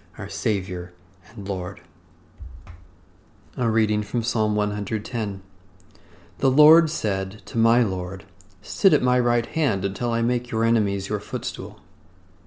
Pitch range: 95-120 Hz